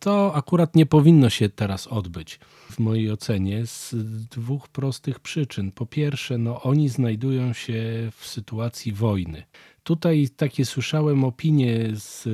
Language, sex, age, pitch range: Polish, male, 40-59, 115-135 Hz